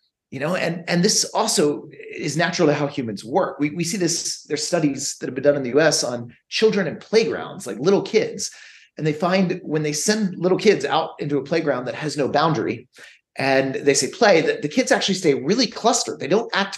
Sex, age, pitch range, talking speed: male, 30-49, 145-190 Hz, 220 wpm